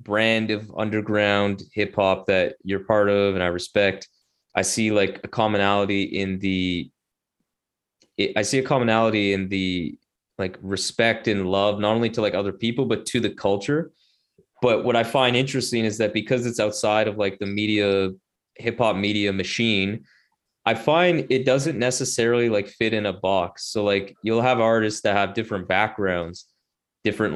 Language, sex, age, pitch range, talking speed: English, male, 20-39, 100-115 Hz, 170 wpm